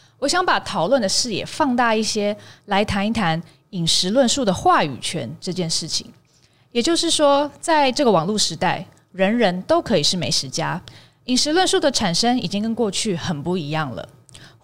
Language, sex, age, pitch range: Chinese, female, 20-39, 165-275 Hz